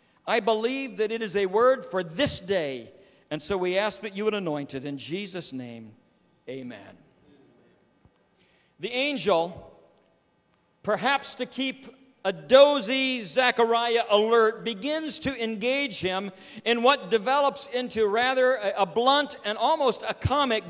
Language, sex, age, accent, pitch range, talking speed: English, male, 50-69, American, 215-280 Hz, 135 wpm